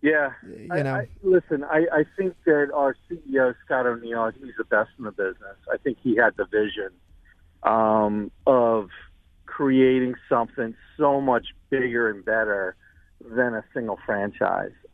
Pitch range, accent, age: 110-145 Hz, American, 50-69